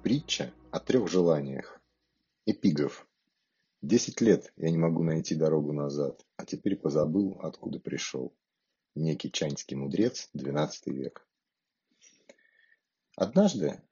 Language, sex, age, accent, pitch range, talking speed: Russian, male, 30-49, native, 80-135 Hz, 105 wpm